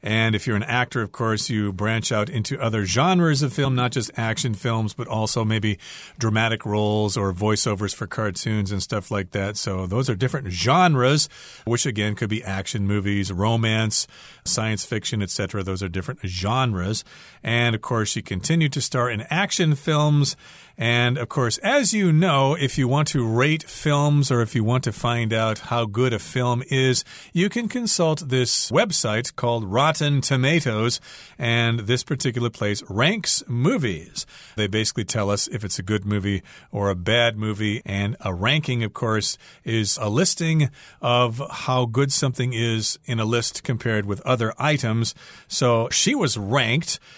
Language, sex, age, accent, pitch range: Chinese, male, 40-59, American, 110-135 Hz